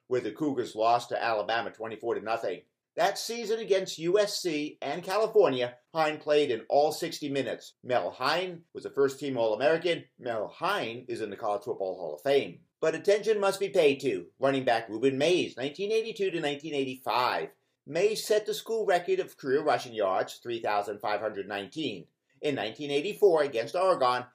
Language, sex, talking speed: English, male, 150 wpm